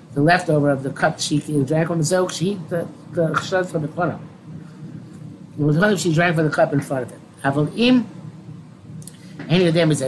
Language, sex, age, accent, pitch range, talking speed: English, male, 50-69, American, 150-175 Hz, 200 wpm